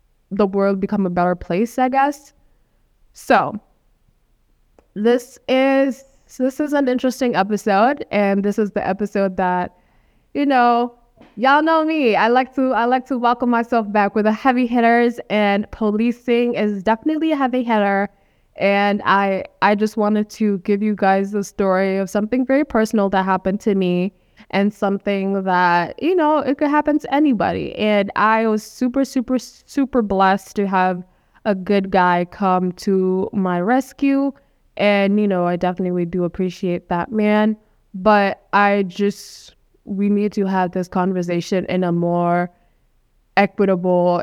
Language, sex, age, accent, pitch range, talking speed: English, female, 10-29, American, 185-235 Hz, 155 wpm